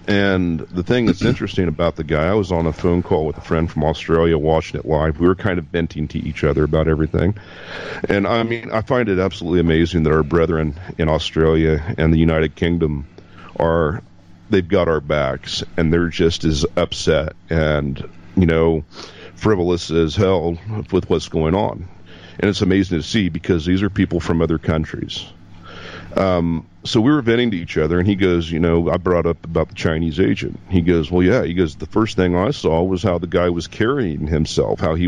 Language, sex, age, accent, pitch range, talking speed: English, male, 40-59, American, 80-95 Hz, 205 wpm